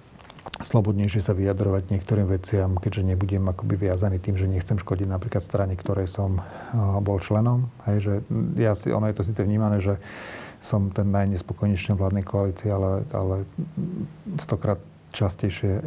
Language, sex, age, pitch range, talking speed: Slovak, male, 40-59, 95-110 Hz, 140 wpm